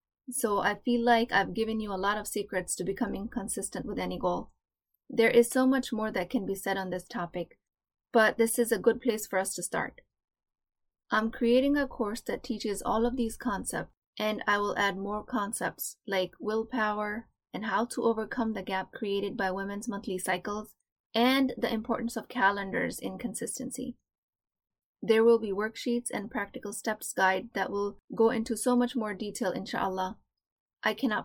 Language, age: English, 20-39